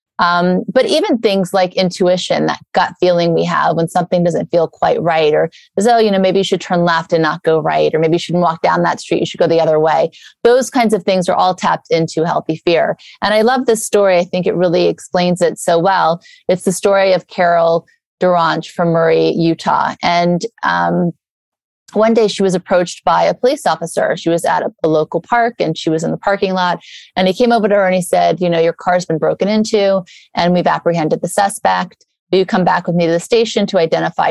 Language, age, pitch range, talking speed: English, 30-49, 170-200 Hz, 235 wpm